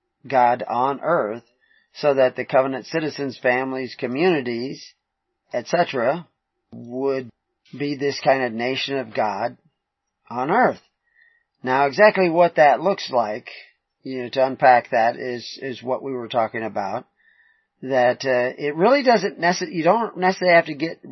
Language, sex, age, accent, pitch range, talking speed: English, male, 40-59, American, 120-145 Hz, 145 wpm